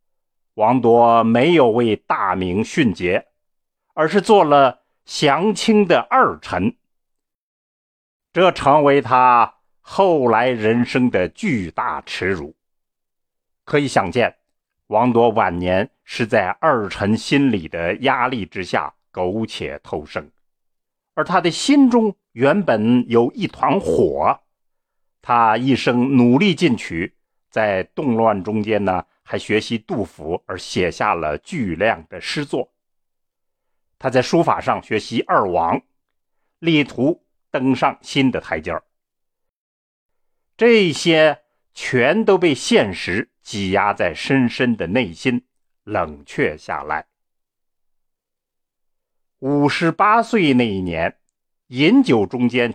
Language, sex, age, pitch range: Chinese, male, 50-69, 110-160 Hz